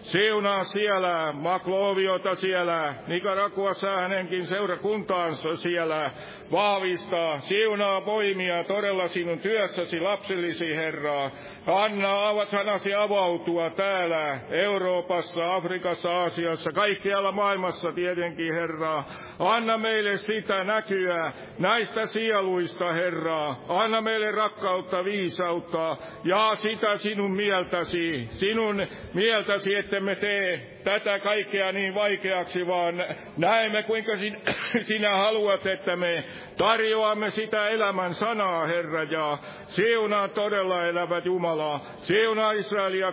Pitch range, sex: 175-205 Hz, male